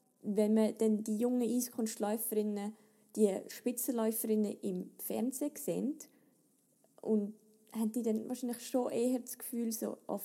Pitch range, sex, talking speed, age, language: 195-235 Hz, female, 125 wpm, 20-39, German